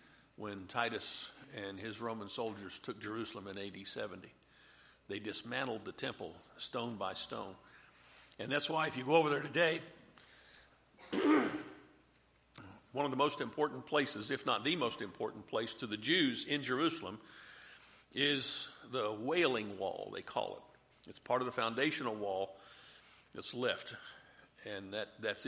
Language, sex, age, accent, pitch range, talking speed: English, male, 50-69, American, 105-140 Hz, 145 wpm